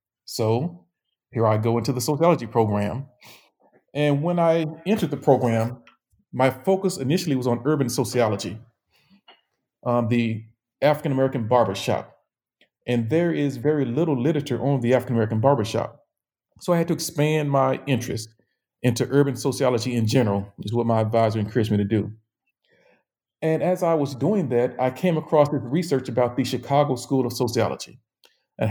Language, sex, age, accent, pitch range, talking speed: English, male, 40-59, American, 120-150 Hz, 155 wpm